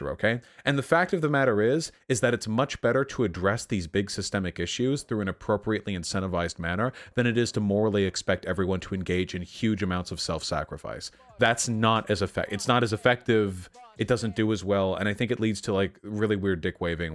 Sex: male